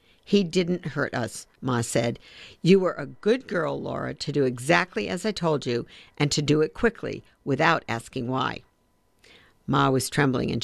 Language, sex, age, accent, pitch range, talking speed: English, female, 60-79, American, 140-200 Hz, 175 wpm